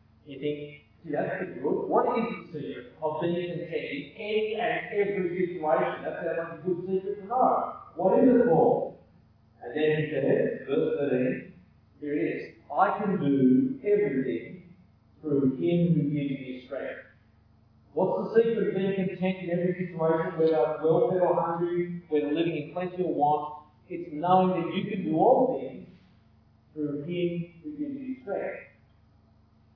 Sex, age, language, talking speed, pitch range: male, 50-69, English, 160 wpm, 150-195 Hz